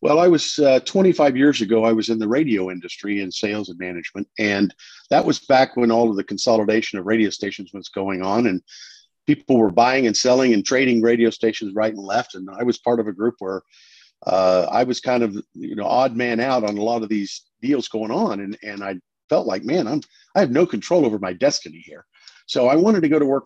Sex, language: male, English